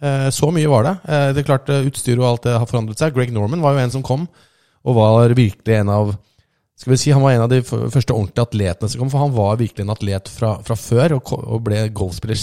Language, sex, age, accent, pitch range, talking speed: English, male, 20-39, Norwegian, 105-130 Hz, 255 wpm